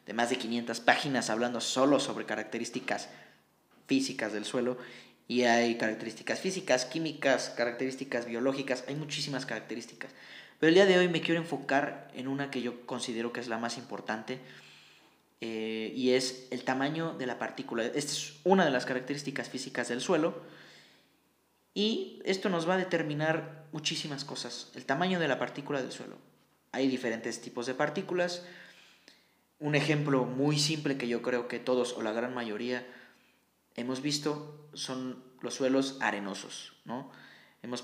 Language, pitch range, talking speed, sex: Spanish, 120-150 Hz, 155 wpm, male